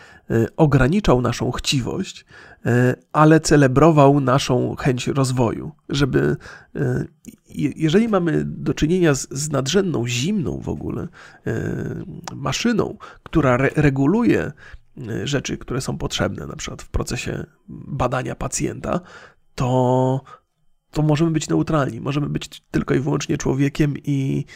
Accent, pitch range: native, 125-160 Hz